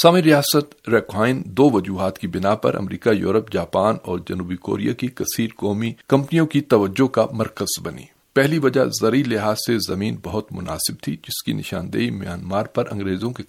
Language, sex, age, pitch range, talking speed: Urdu, male, 50-69, 105-135 Hz, 175 wpm